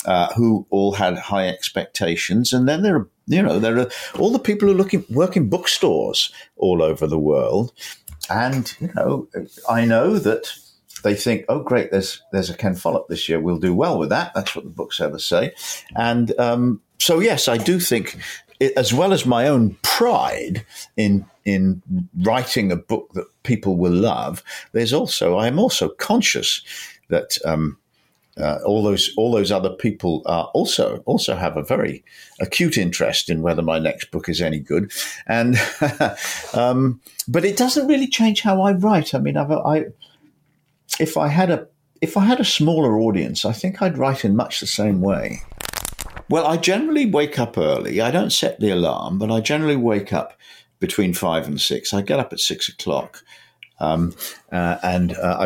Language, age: English, 50-69